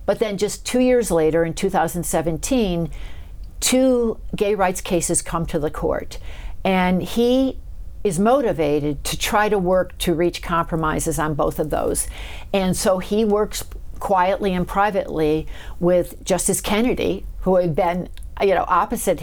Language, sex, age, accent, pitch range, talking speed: English, female, 60-79, American, 160-195 Hz, 145 wpm